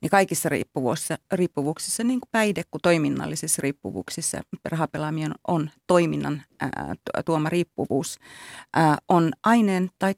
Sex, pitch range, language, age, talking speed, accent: female, 160-200 Hz, Finnish, 40-59, 110 wpm, native